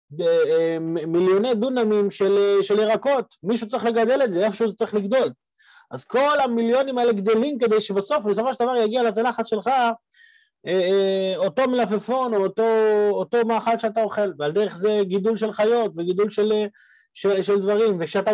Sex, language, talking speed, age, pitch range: male, Hebrew, 155 wpm, 30-49, 195-245 Hz